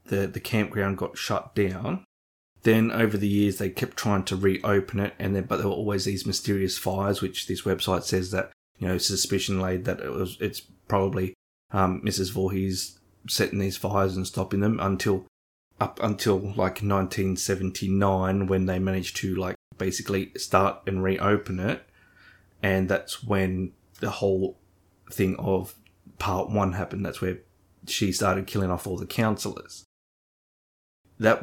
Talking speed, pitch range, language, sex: 160 wpm, 95-100 Hz, English, male